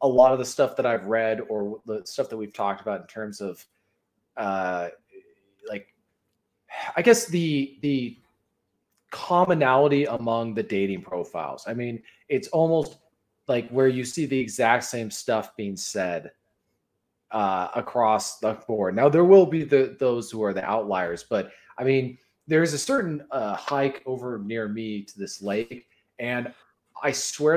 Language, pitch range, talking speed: English, 110-150 Hz, 165 wpm